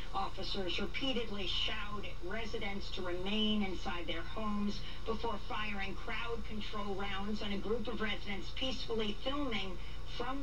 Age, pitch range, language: 50-69, 185-225 Hz, English